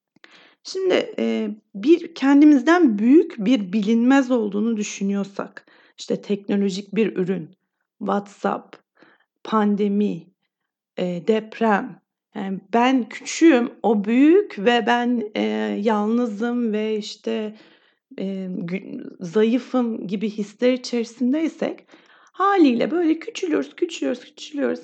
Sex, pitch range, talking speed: female, 210-285 Hz, 80 wpm